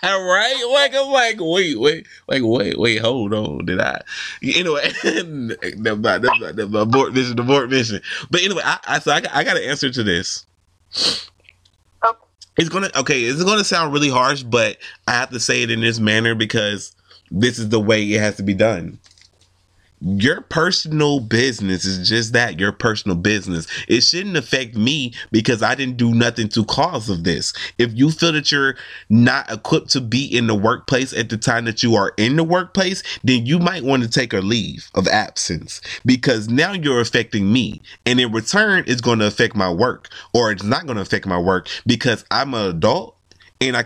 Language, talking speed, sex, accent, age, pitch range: English, 195 wpm, male, American, 30-49, 105-145 Hz